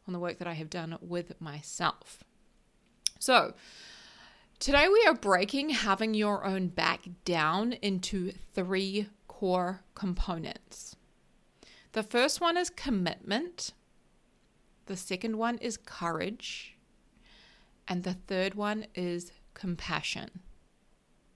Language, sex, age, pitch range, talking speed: English, female, 30-49, 180-225 Hz, 110 wpm